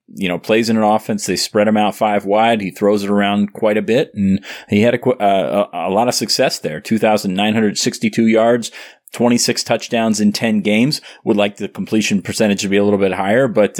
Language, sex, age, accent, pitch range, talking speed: English, male, 30-49, American, 100-110 Hz, 210 wpm